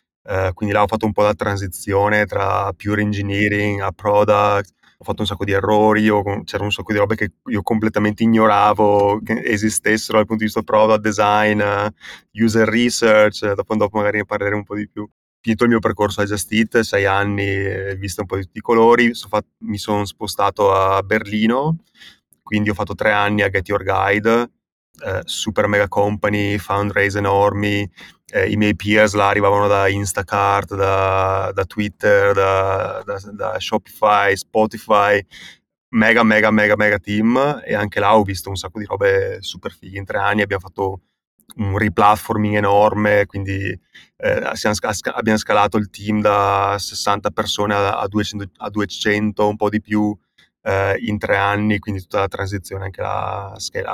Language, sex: Italian, male